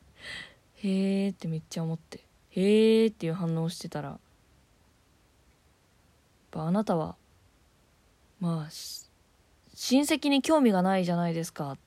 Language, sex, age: Japanese, female, 20-39